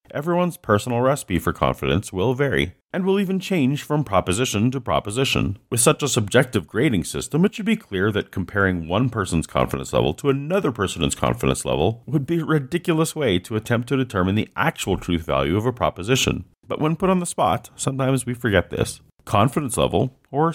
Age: 40-59